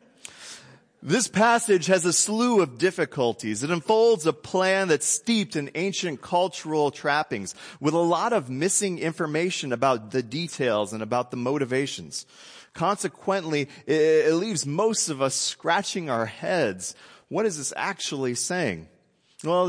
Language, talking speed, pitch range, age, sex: English, 135 wpm, 115-165 Hz, 30-49, male